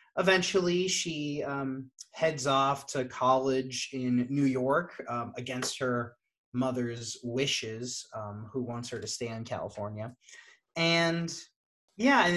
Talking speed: 125 wpm